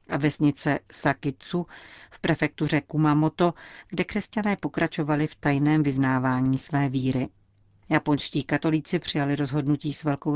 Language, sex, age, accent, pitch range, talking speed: Czech, female, 40-59, native, 140-165 Hz, 115 wpm